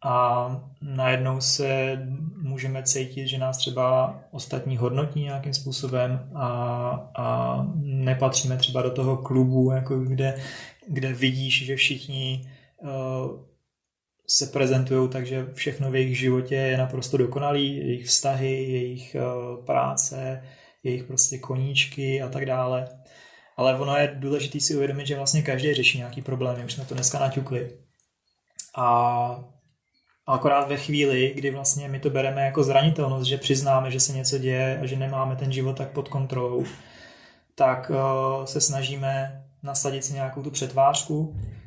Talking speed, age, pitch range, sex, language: 140 wpm, 20-39, 130-140 Hz, male, Slovak